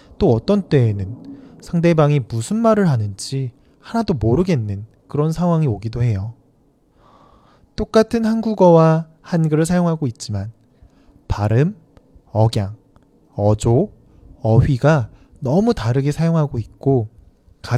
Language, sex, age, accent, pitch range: Chinese, male, 20-39, Korean, 115-160 Hz